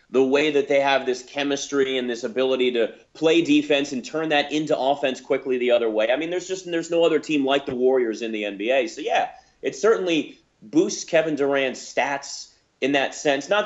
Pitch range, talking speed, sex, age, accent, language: 120-165 Hz, 210 wpm, male, 30-49, American, English